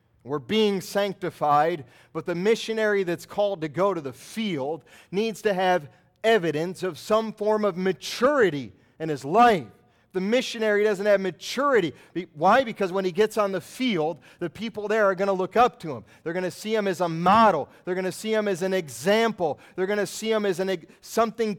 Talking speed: 195 wpm